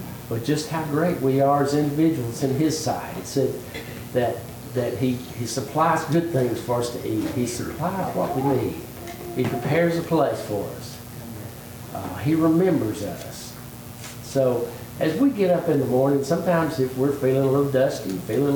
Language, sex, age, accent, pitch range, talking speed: English, male, 60-79, American, 120-140 Hz, 180 wpm